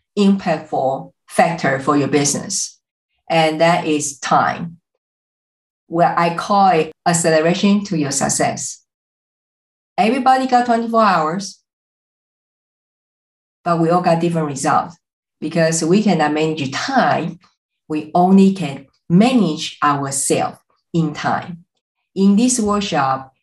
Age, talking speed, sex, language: 50-69, 110 wpm, female, English